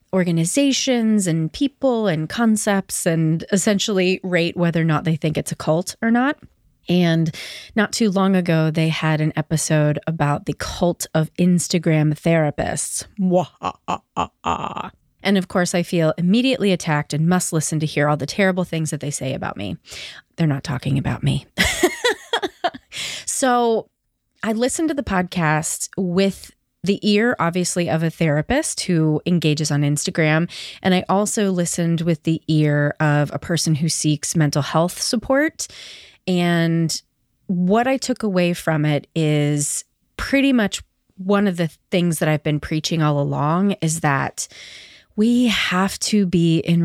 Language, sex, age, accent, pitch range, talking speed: English, female, 30-49, American, 150-195 Hz, 150 wpm